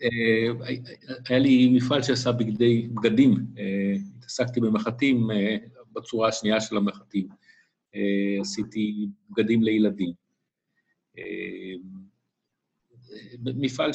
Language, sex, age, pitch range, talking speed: Hebrew, male, 50-69, 100-120 Hz, 90 wpm